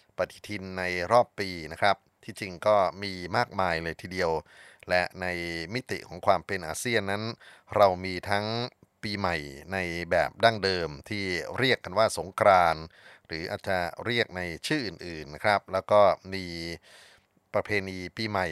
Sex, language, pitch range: male, Thai, 85-105 Hz